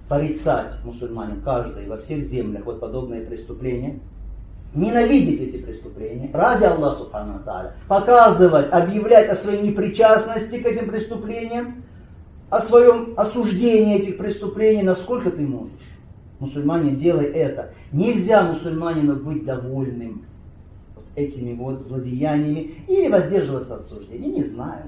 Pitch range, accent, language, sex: 135-220 Hz, native, Russian, male